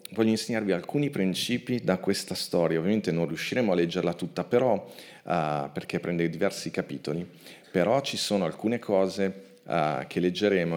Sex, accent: male, native